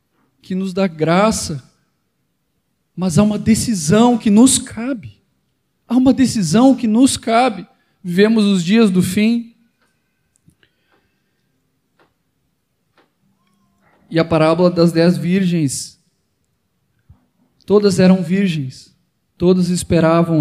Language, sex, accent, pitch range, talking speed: Portuguese, male, Brazilian, 145-185 Hz, 95 wpm